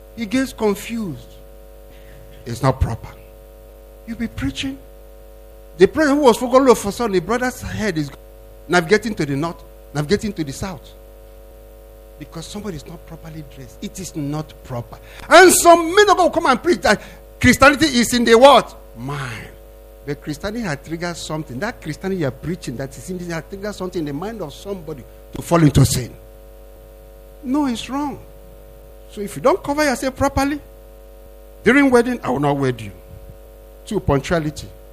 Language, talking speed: English, 170 wpm